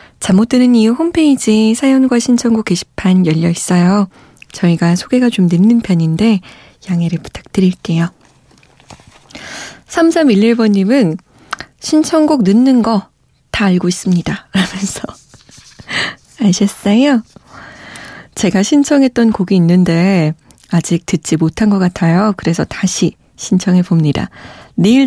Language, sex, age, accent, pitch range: Korean, female, 20-39, native, 180-235 Hz